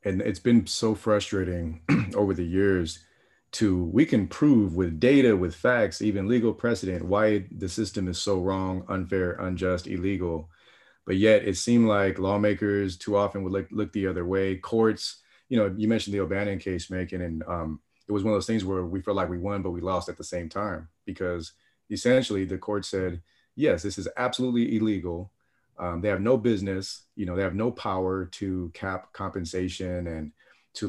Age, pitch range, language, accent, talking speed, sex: 30-49, 90-105 Hz, English, American, 190 wpm, male